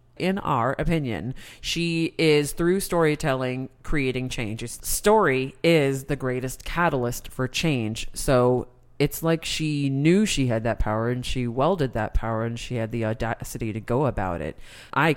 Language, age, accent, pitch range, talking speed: English, 30-49, American, 115-145 Hz, 160 wpm